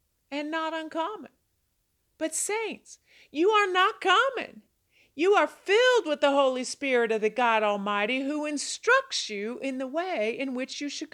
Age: 50-69